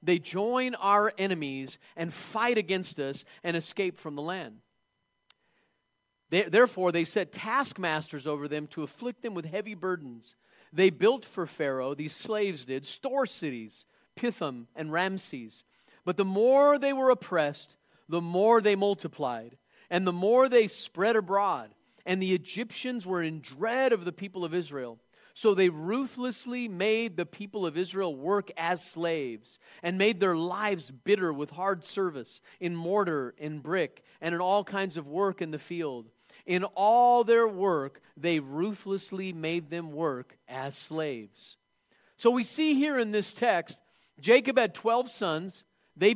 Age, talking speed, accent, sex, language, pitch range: 40-59, 155 wpm, American, male, English, 160-215 Hz